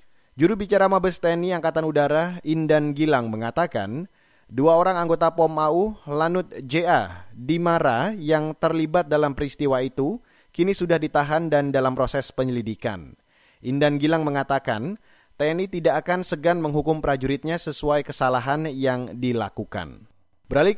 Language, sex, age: Indonesian, male, 30-49